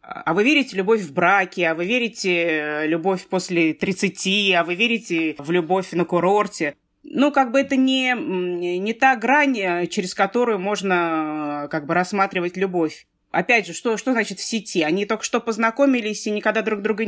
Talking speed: 170 wpm